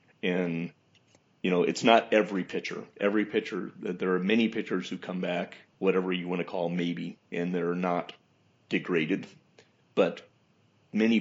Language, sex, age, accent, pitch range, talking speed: English, male, 40-59, American, 85-100 Hz, 155 wpm